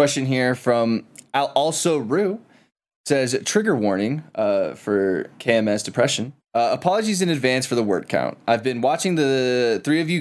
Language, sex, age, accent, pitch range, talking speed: English, male, 20-39, American, 115-150 Hz, 165 wpm